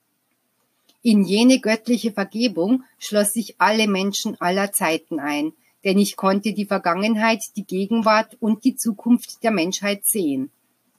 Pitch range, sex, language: 195-235 Hz, female, German